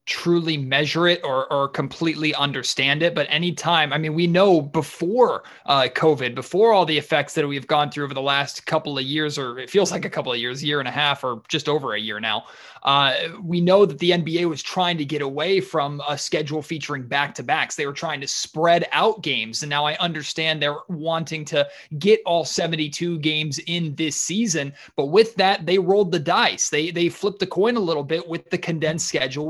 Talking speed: 220 wpm